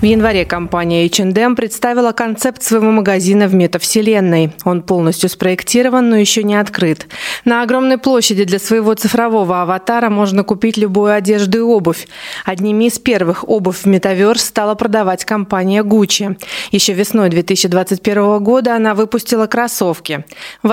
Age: 20-39